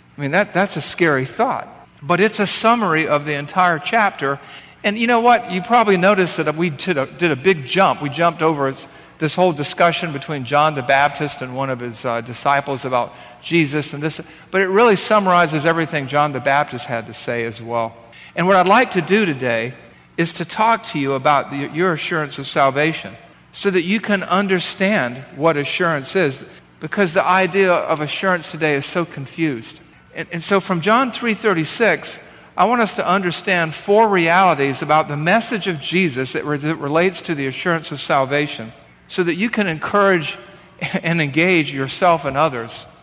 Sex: male